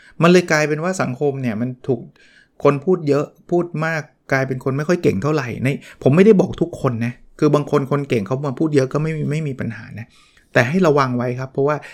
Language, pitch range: Thai, 125-150 Hz